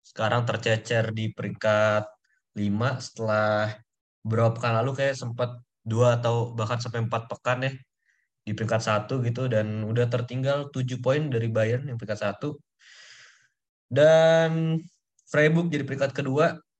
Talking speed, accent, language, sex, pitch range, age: 130 wpm, native, Indonesian, male, 110-130 Hz, 20-39